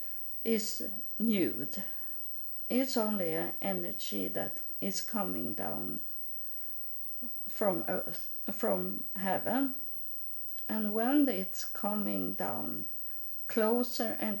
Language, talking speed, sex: English, 85 wpm, female